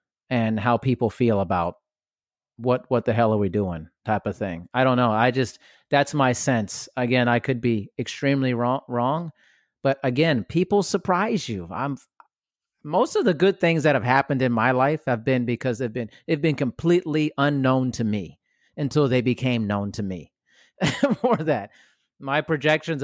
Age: 40-59